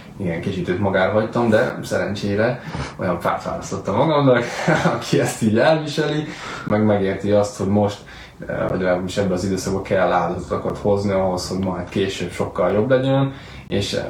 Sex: male